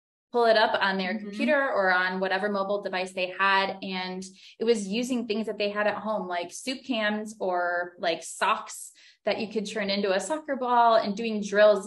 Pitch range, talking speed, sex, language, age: 185-225 Hz, 200 wpm, female, English, 20-39